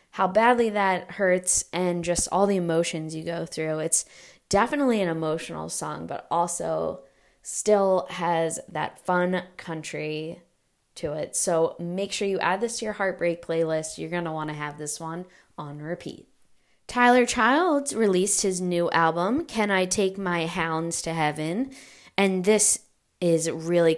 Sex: female